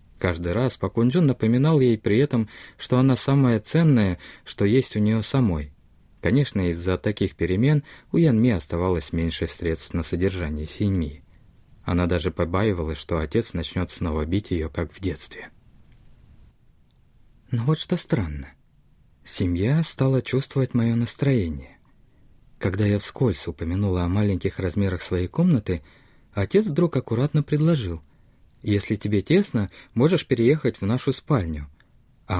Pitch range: 85-125 Hz